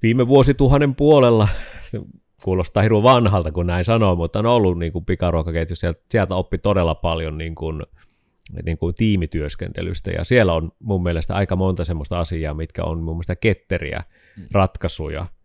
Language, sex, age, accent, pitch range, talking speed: Finnish, male, 30-49, native, 85-110 Hz, 150 wpm